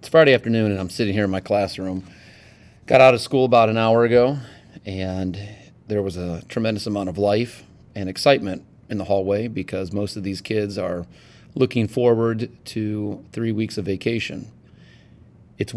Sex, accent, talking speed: male, American, 170 wpm